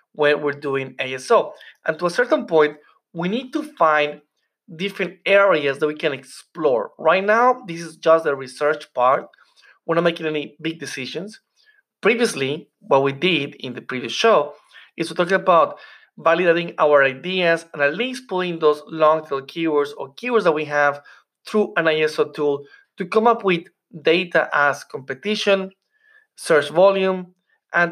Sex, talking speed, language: male, 160 wpm, English